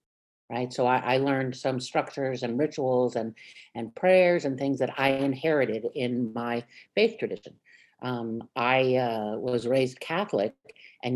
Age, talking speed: 50-69, 150 wpm